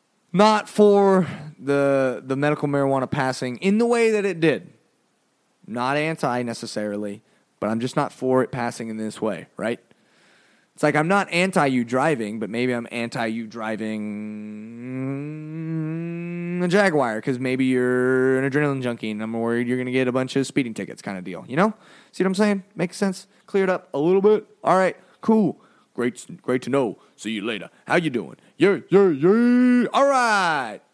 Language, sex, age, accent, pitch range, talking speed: English, male, 20-39, American, 125-200 Hz, 185 wpm